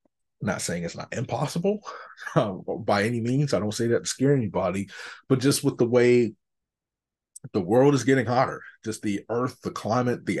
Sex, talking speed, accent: male, 185 wpm, American